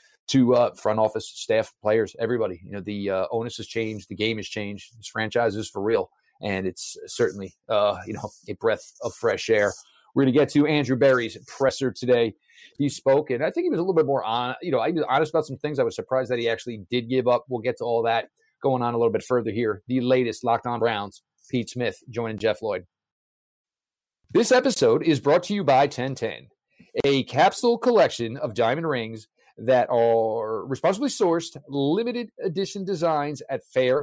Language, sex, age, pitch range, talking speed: English, male, 30-49, 115-160 Hz, 200 wpm